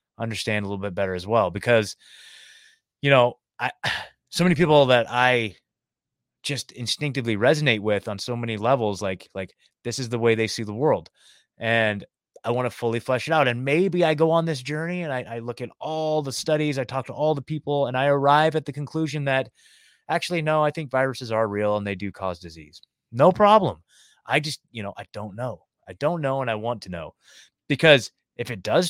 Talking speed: 215 wpm